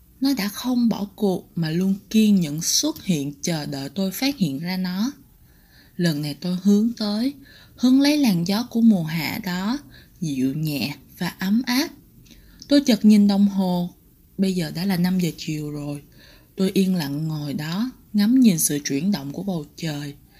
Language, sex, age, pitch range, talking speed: Vietnamese, female, 20-39, 165-225 Hz, 180 wpm